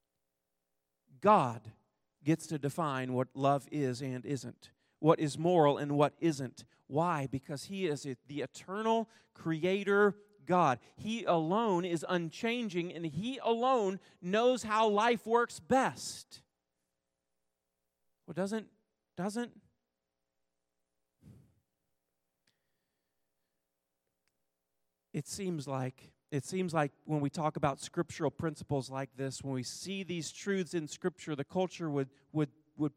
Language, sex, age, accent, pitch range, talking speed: English, male, 40-59, American, 130-195 Hz, 115 wpm